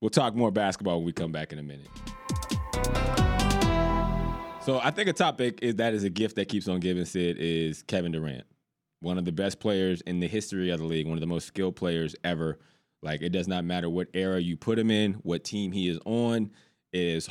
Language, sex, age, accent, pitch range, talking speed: English, male, 20-39, American, 85-110 Hz, 220 wpm